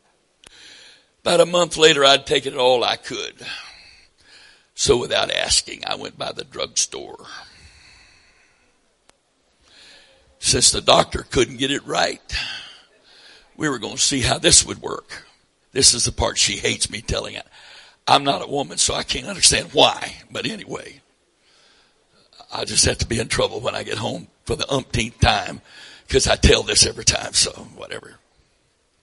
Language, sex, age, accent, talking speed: English, male, 60-79, American, 160 wpm